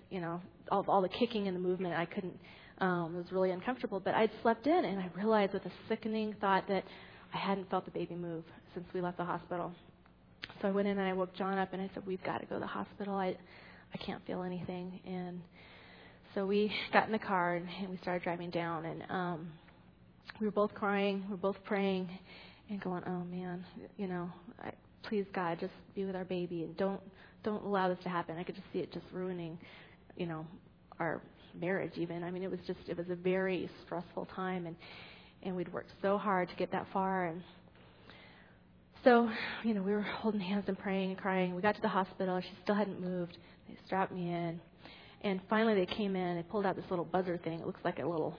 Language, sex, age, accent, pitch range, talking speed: English, female, 30-49, American, 175-200 Hz, 225 wpm